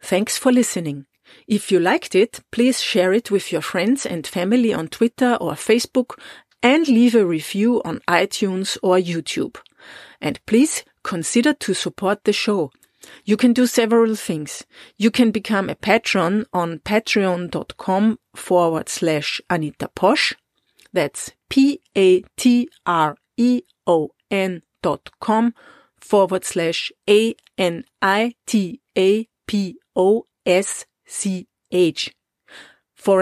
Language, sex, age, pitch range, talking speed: English, female, 40-59, 185-240 Hz, 110 wpm